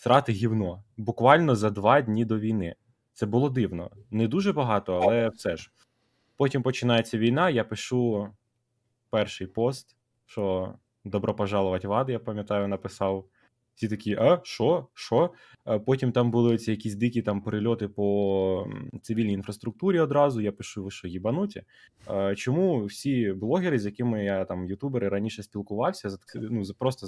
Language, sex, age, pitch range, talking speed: Ukrainian, male, 20-39, 100-125 Hz, 145 wpm